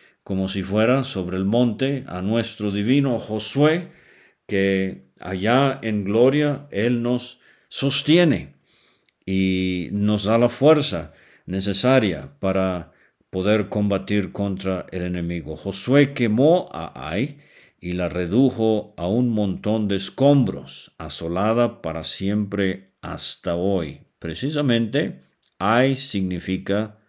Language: Spanish